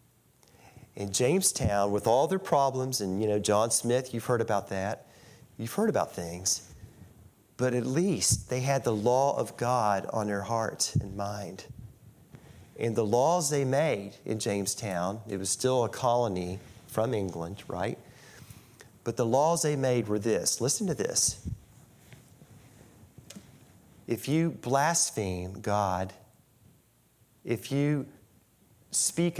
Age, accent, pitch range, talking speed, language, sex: 40-59, American, 100-125 Hz, 135 wpm, English, male